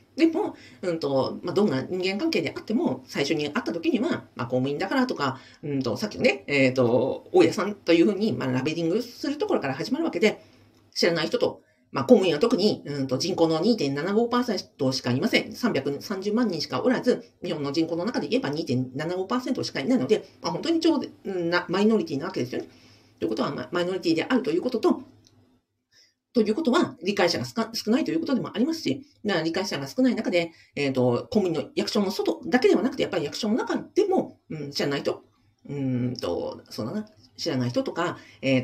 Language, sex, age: Japanese, female, 40-59